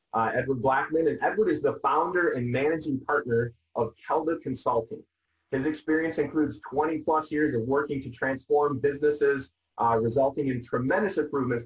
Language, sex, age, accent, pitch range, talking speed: English, male, 30-49, American, 120-150 Hz, 155 wpm